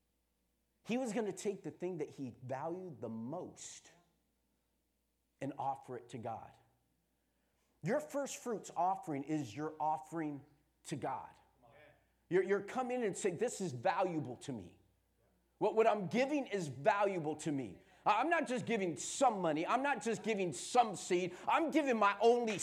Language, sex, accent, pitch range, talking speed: English, male, American, 150-245 Hz, 160 wpm